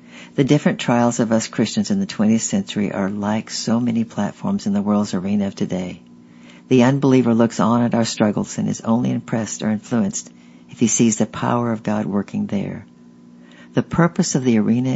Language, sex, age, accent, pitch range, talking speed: English, female, 60-79, American, 85-130 Hz, 195 wpm